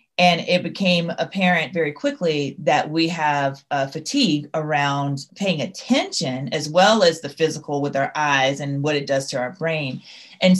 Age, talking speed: 30-49, 170 wpm